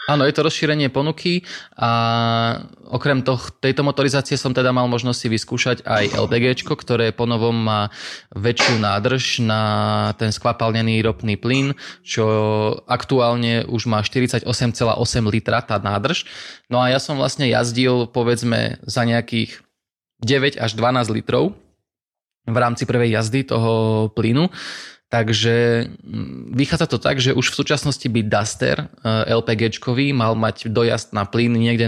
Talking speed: 135 wpm